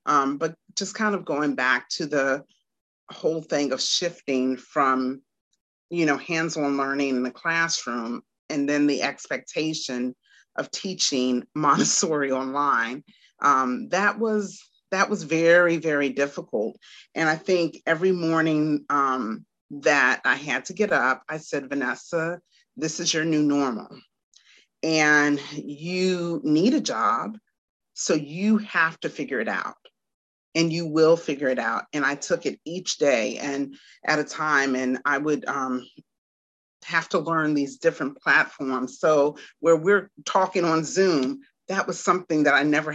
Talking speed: 150 wpm